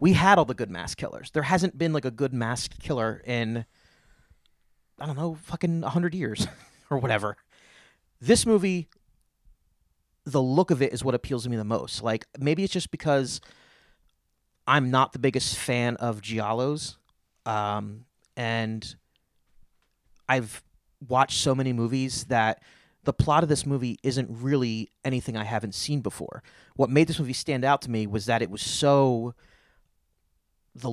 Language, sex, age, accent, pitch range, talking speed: English, male, 30-49, American, 110-150 Hz, 165 wpm